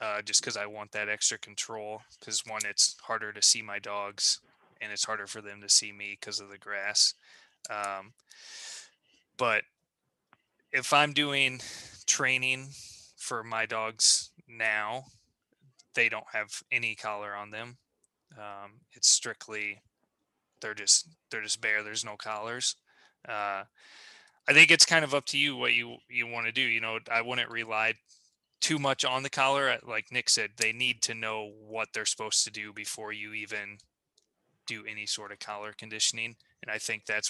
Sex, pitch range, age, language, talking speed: male, 105-125 Hz, 20-39, English, 170 wpm